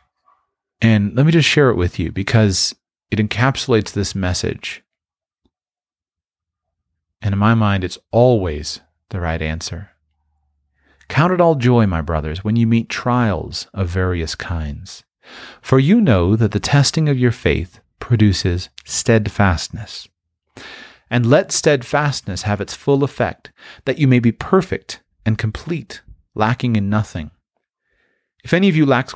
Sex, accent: male, American